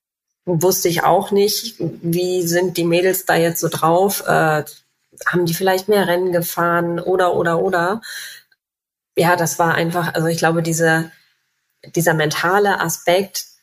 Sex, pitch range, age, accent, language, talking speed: female, 160-180 Hz, 20-39, German, German, 140 wpm